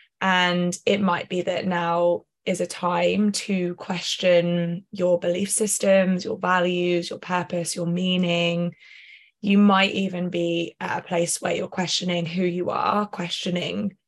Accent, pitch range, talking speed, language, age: British, 175-205 Hz, 145 wpm, English, 20-39